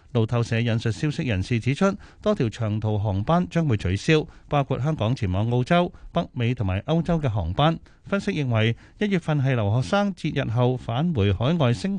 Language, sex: Chinese, male